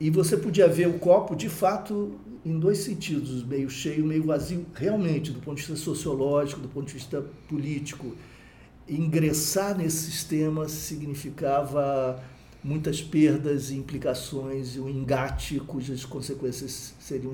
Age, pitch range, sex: 50-69, 130-160 Hz, male